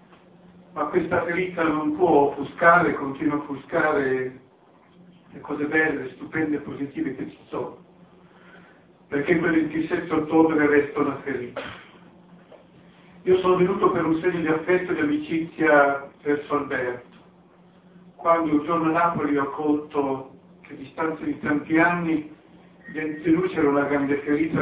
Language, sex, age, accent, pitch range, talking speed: Italian, male, 50-69, native, 145-180 Hz, 140 wpm